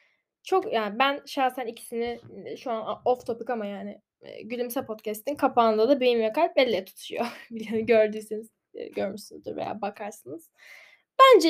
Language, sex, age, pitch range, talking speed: Turkish, female, 10-29, 230-315 Hz, 145 wpm